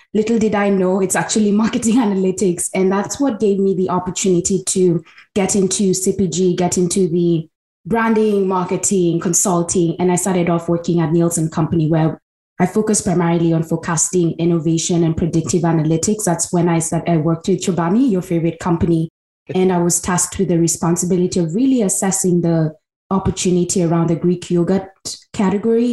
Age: 20-39